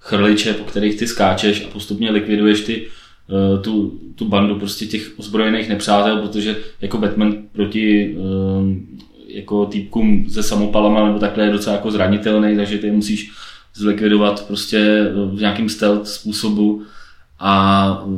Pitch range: 100-110 Hz